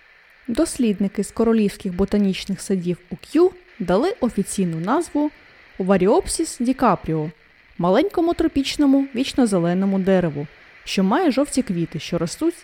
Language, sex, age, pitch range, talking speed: Ukrainian, female, 20-39, 185-270 Hz, 105 wpm